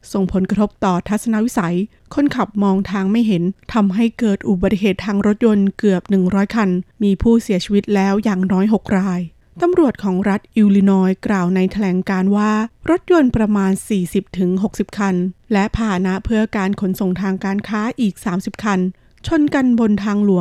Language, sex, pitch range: Thai, female, 190-220 Hz